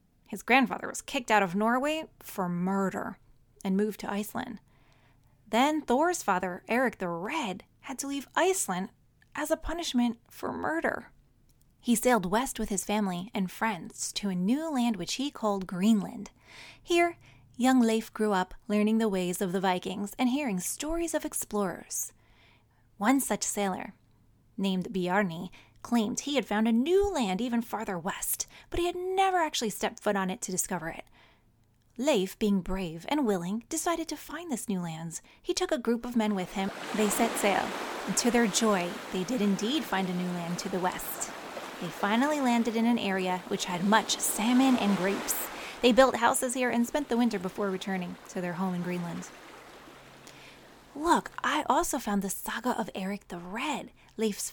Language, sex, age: English, female, 20-39